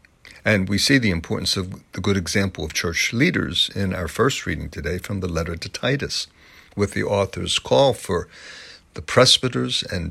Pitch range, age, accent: 90-115 Hz, 60-79, American